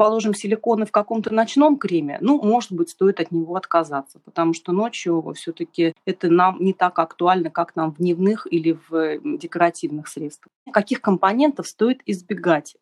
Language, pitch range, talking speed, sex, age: Russian, 170-205 Hz, 160 wpm, female, 30-49